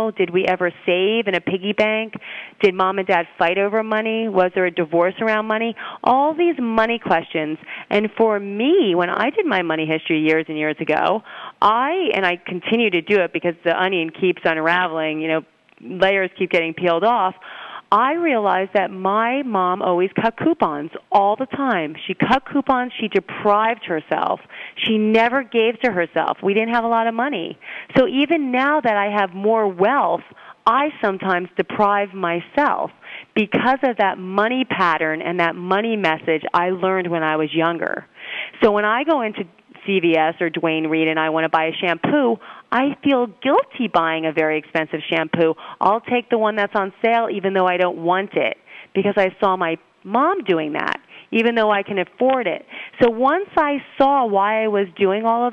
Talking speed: 185 wpm